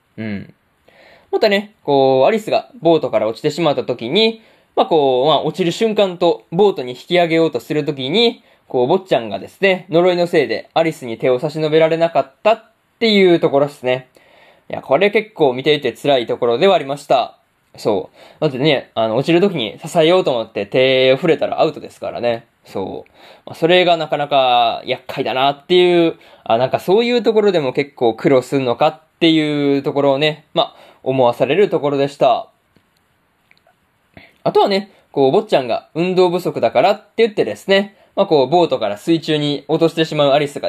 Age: 20-39